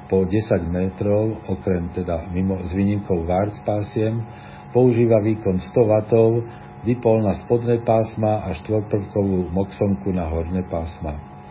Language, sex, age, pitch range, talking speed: Slovak, male, 50-69, 95-115 Hz, 120 wpm